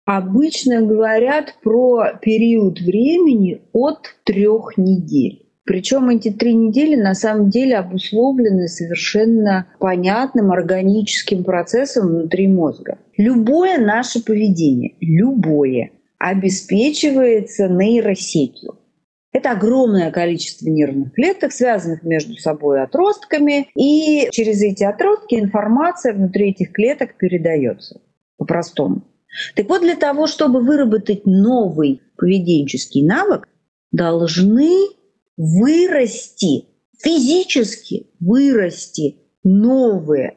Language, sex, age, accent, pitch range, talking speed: Russian, female, 40-59, native, 185-265 Hz, 90 wpm